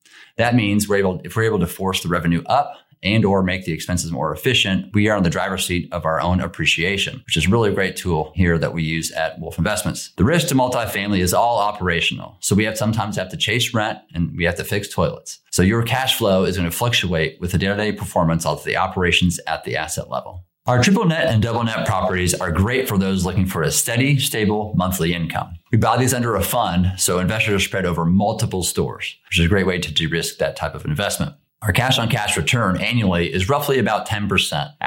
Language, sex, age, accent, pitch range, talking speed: English, male, 30-49, American, 85-110 Hz, 225 wpm